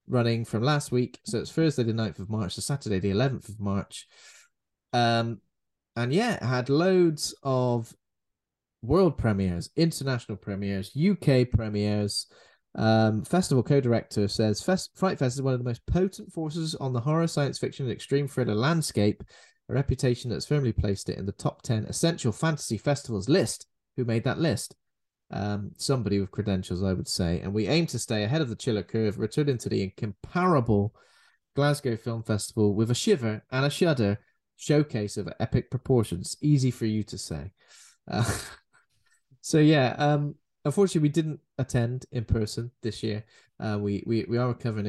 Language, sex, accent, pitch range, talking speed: English, male, British, 105-140 Hz, 170 wpm